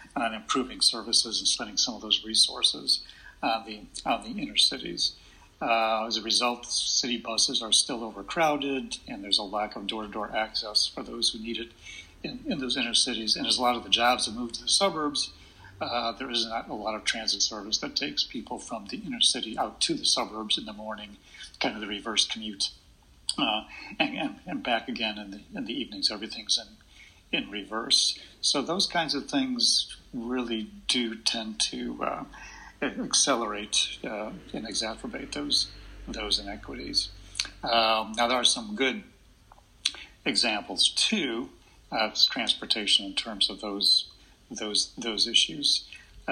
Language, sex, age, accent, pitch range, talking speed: English, male, 60-79, American, 105-120 Hz, 165 wpm